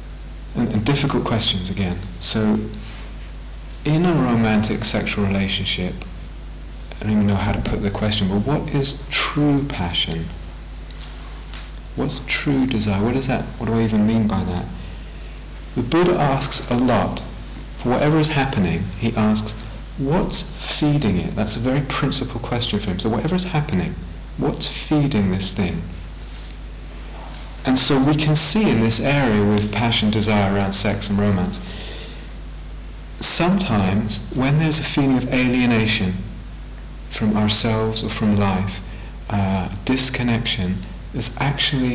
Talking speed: 140 wpm